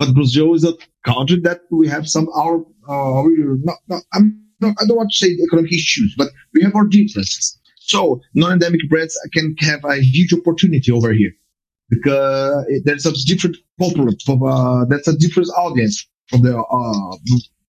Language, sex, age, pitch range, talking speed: English, male, 30-49, 130-165 Hz, 175 wpm